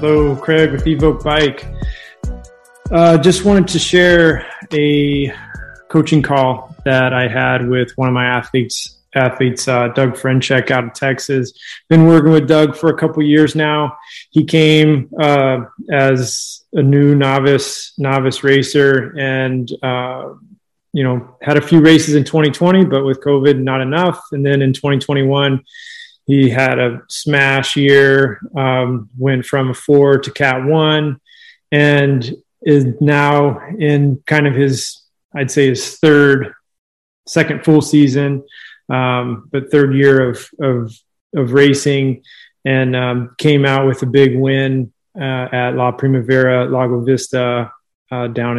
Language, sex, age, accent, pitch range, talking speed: English, male, 20-39, American, 130-150 Hz, 145 wpm